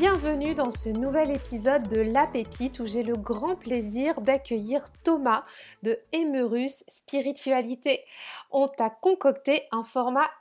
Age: 30-49